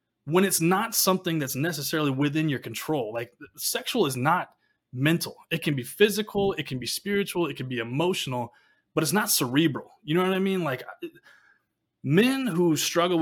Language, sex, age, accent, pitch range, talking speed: English, male, 20-39, American, 135-175 Hz, 175 wpm